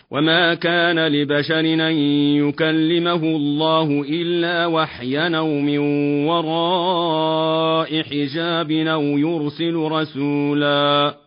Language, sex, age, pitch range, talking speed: Arabic, male, 40-59, 145-170 Hz, 75 wpm